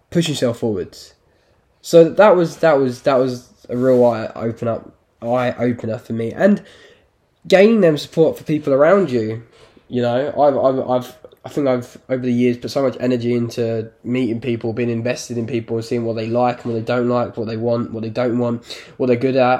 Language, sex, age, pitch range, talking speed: English, male, 10-29, 115-130 Hz, 210 wpm